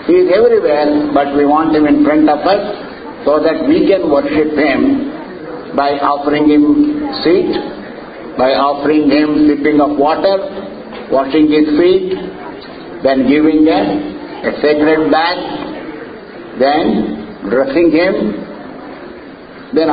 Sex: male